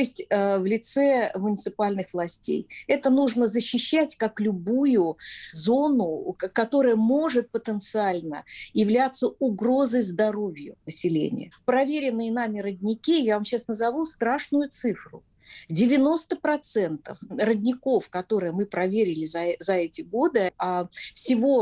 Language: Russian